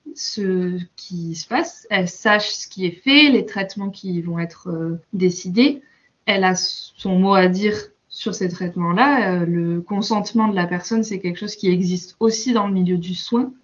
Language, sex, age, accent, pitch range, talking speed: French, female, 20-39, French, 180-220 Hz, 190 wpm